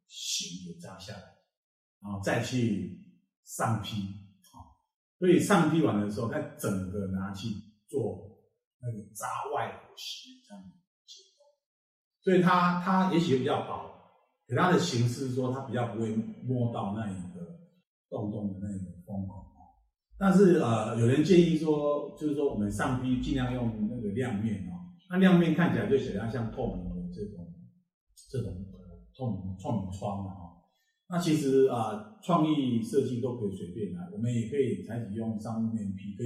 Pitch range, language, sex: 100-170 Hz, Chinese, male